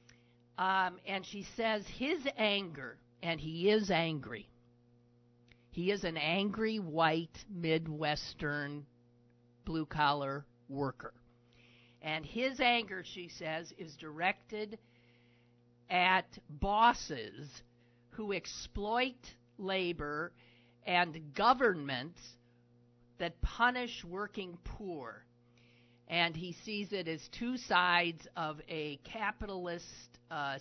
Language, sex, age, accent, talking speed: English, male, 50-69, American, 90 wpm